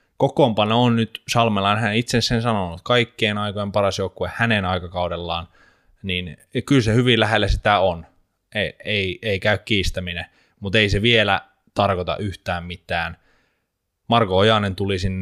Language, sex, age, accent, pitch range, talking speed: Finnish, male, 20-39, native, 90-105 Hz, 140 wpm